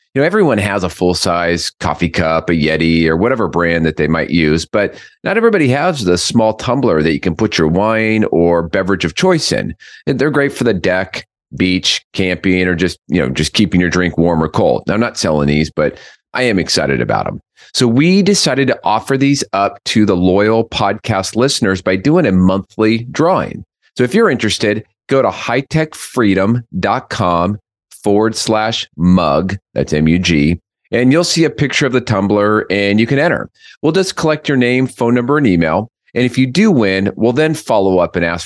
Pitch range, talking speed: 90-125 Hz, 200 wpm